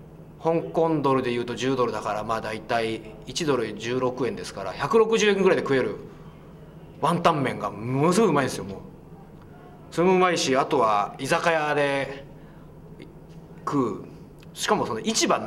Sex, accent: male, native